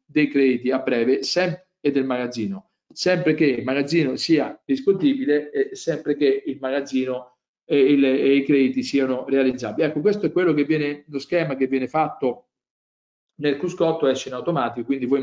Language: Italian